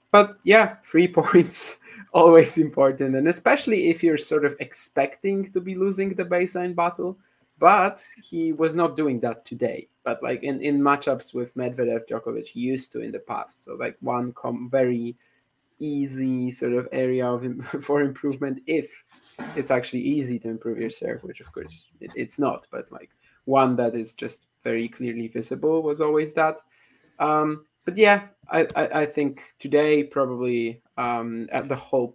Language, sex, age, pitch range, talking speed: English, male, 20-39, 120-165 Hz, 170 wpm